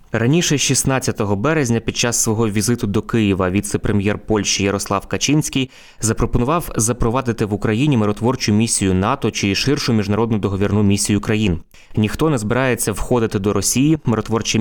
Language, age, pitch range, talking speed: Ukrainian, 20-39, 105-120 Hz, 135 wpm